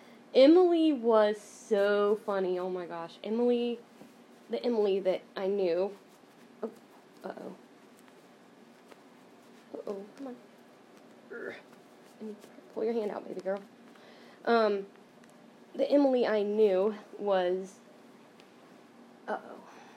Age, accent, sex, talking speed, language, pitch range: 10-29, American, female, 95 wpm, English, 195-245 Hz